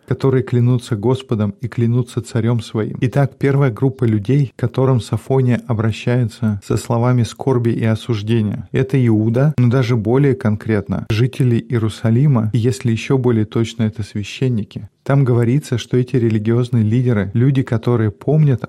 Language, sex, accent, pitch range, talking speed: Russian, male, native, 110-130 Hz, 140 wpm